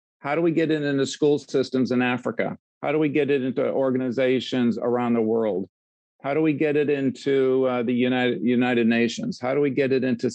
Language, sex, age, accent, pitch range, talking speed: English, male, 50-69, American, 120-145 Hz, 215 wpm